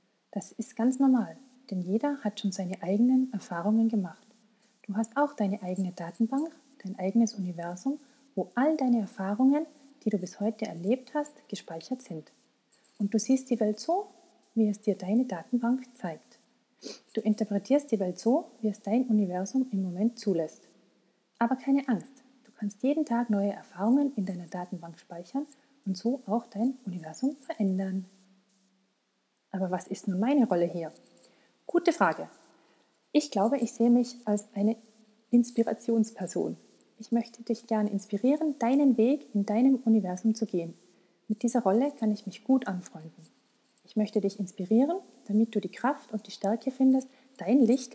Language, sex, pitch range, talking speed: German, female, 200-255 Hz, 160 wpm